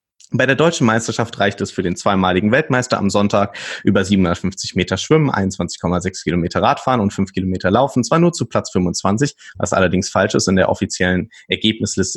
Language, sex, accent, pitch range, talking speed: German, male, German, 95-115 Hz, 180 wpm